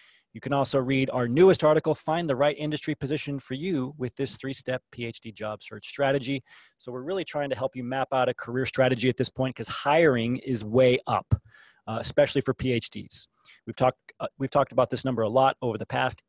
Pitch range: 125-155 Hz